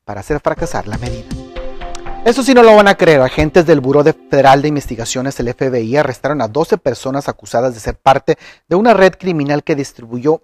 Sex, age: male, 40-59